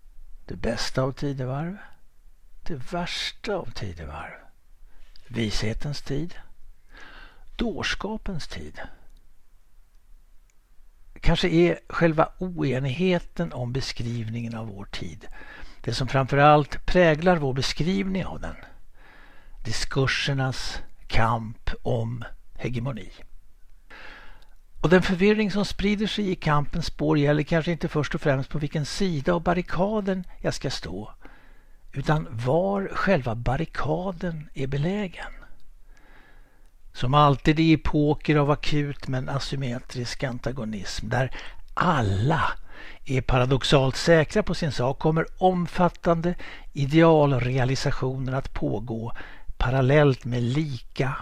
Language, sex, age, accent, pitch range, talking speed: Swedish, male, 60-79, native, 120-170 Hz, 105 wpm